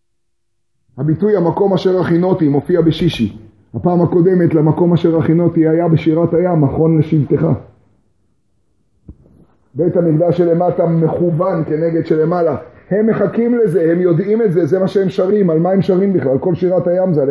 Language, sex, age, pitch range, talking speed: Hebrew, male, 30-49, 115-180 Hz, 150 wpm